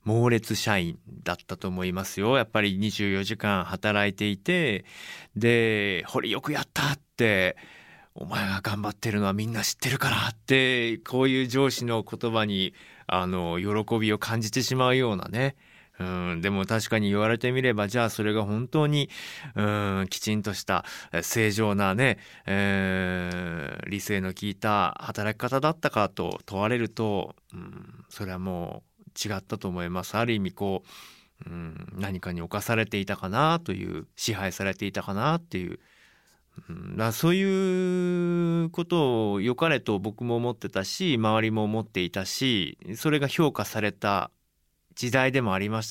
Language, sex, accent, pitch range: Japanese, male, native, 95-130 Hz